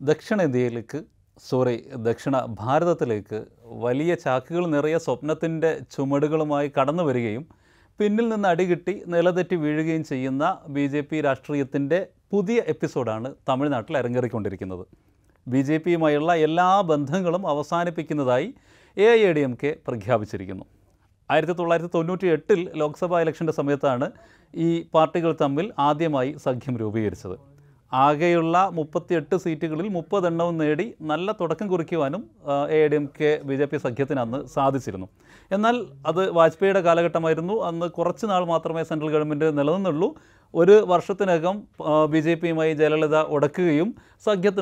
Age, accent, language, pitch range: 40-59, native, Malayalam, 140-175 Hz